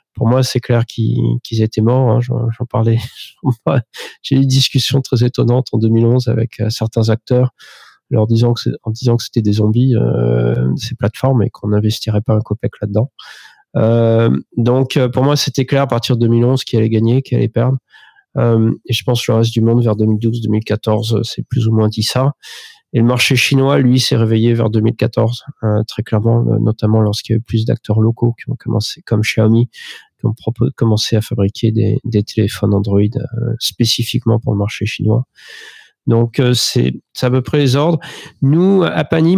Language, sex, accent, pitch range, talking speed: French, male, French, 110-130 Hz, 180 wpm